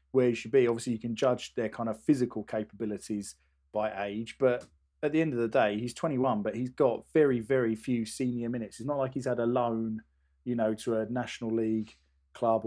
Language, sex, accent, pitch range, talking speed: English, male, British, 105-125 Hz, 220 wpm